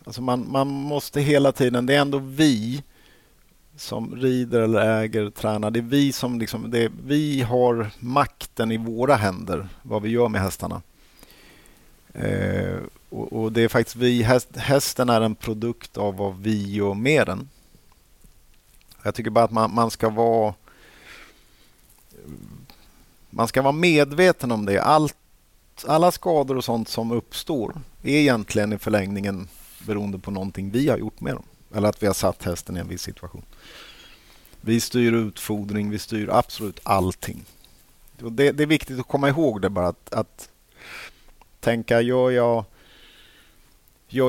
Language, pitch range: Swedish, 100-125 Hz